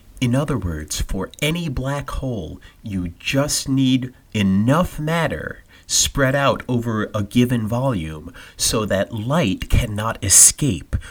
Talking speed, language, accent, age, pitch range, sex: 125 wpm, English, American, 30-49, 100-140 Hz, male